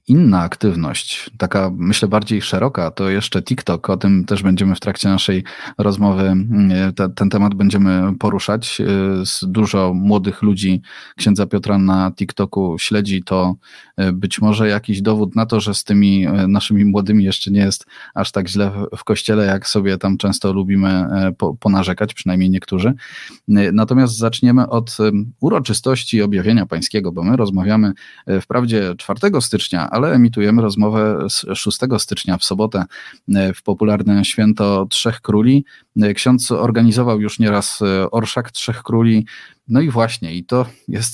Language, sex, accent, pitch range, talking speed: Polish, male, native, 95-110 Hz, 140 wpm